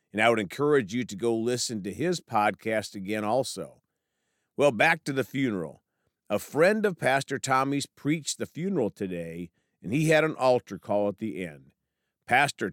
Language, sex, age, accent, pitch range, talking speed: English, male, 50-69, American, 100-135 Hz, 175 wpm